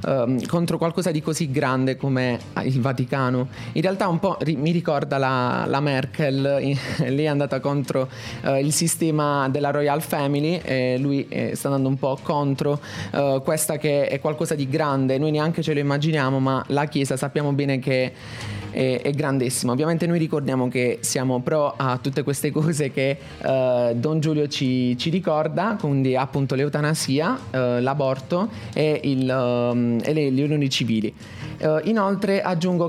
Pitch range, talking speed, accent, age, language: 130-155 Hz, 150 wpm, native, 20-39, Italian